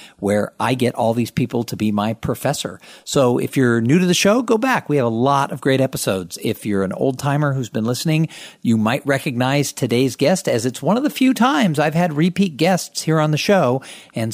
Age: 50-69